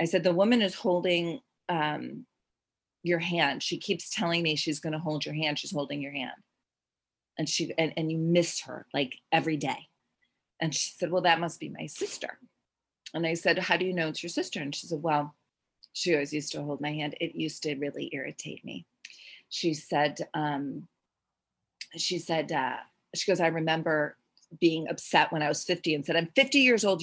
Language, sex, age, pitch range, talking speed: English, female, 30-49, 150-180 Hz, 200 wpm